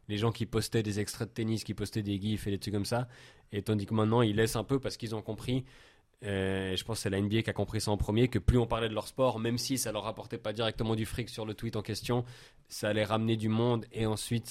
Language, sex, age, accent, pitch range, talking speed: French, male, 20-39, French, 100-115 Hz, 290 wpm